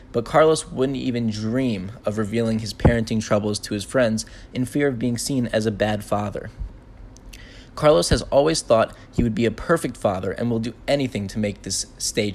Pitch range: 110-130 Hz